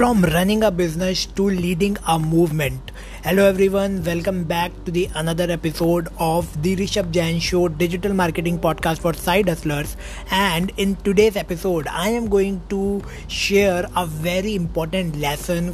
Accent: Indian